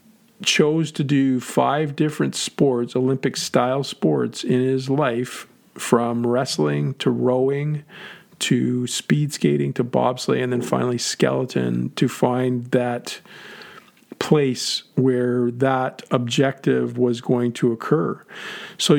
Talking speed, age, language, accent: 115 wpm, 40-59, English, American